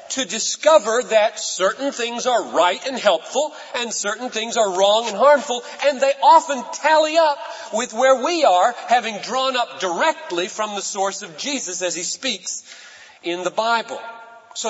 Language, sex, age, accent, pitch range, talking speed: English, male, 40-59, American, 205-275 Hz, 165 wpm